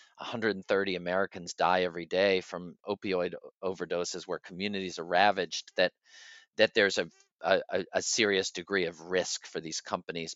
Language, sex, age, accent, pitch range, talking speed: English, male, 40-59, American, 90-105 Hz, 145 wpm